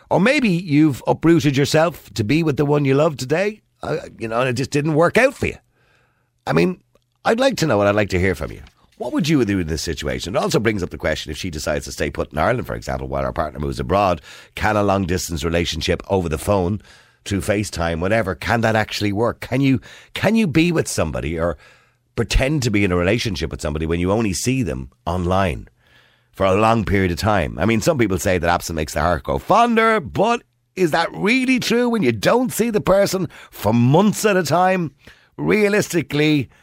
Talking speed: 225 wpm